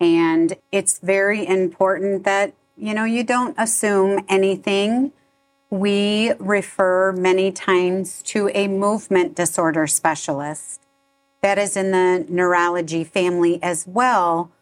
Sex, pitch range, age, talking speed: female, 180-230 Hz, 40-59, 115 wpm